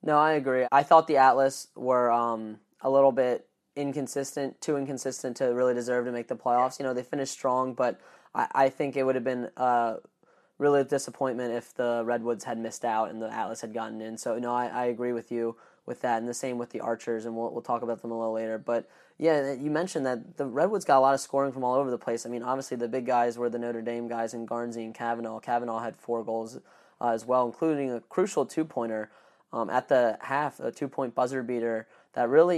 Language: English